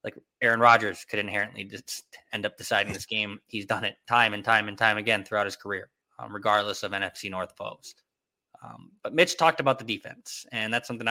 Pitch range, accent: 105-140 Hz, American